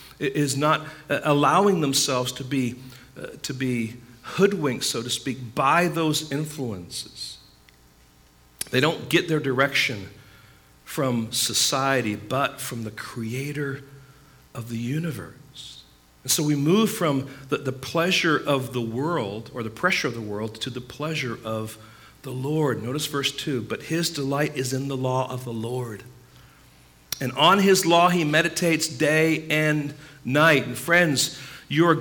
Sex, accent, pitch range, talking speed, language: male, American, 115-150 Hz, 150 wpm, English